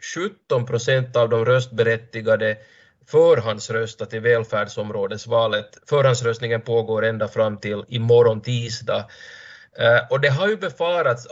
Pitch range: 120-150 Hz